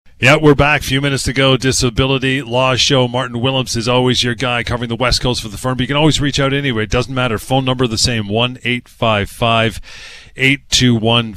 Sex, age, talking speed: male, 30-49, 260 wpm